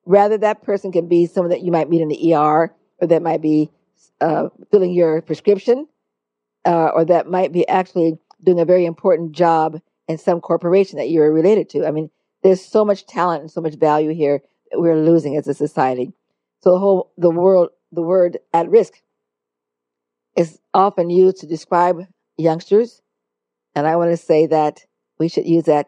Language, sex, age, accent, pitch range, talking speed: English, female, 50-69, American, 150-185 Hz, 190 wpm